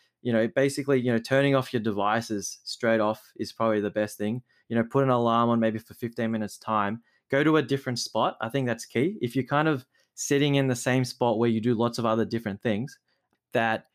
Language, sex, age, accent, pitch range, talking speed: English, male, 20-39, Australian, 110-135 Hz, 230 wpm